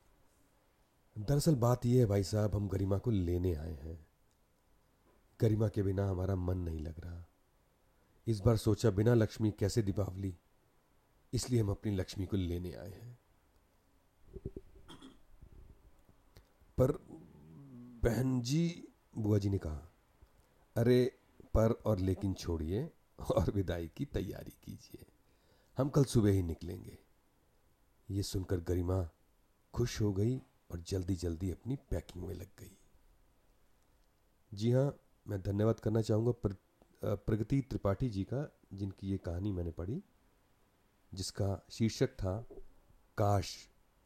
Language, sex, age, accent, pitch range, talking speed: Hindi, male, 40-59, native, 90-115 Hz, 125 wpm